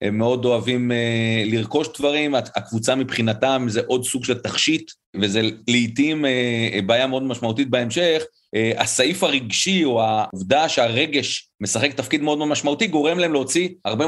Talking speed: 135 wpm